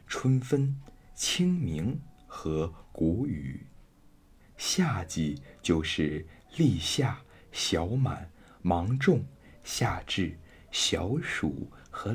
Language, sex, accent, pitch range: Chinese, male, native, 80-130 Hz